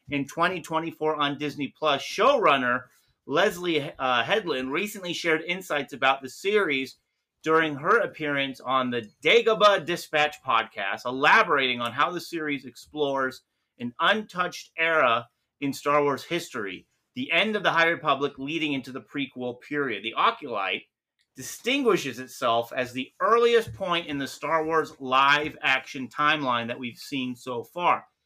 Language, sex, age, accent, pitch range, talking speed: English, male, 30-49, American, 135-180 Hz, 140 wpm